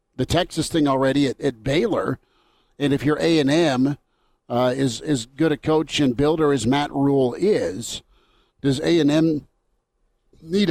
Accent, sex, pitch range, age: American, male, 130-155 Hz, 50-69